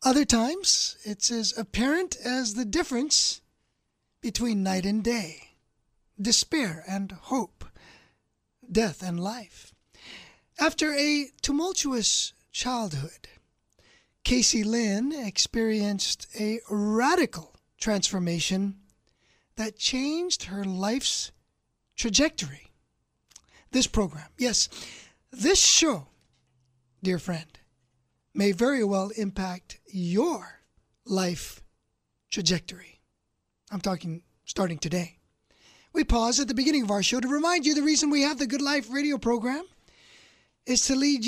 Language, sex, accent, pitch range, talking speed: English, male, American, 180-265 Hz, 110 wpm